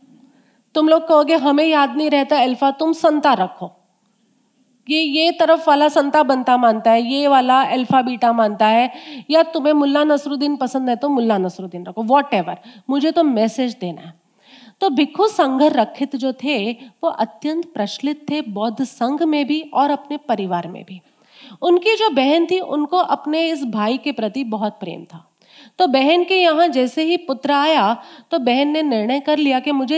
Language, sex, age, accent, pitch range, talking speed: Hindi, female, 30-49, native, 230-295 Hz, 180 wpm